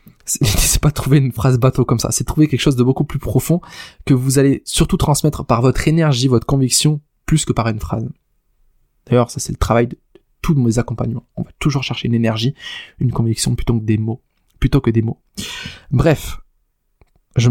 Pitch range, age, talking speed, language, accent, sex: 120-150 Hz, 20-39, 200 wpm, French, French, male